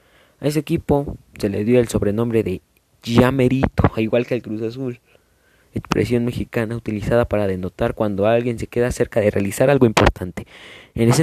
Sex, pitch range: male, 105-130 Hz